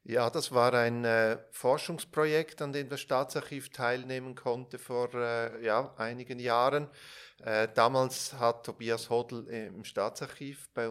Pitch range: 115-135 Hz